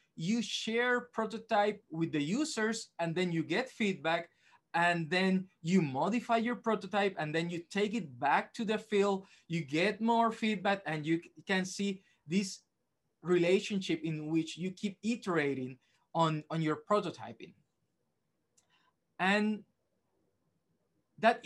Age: 20-39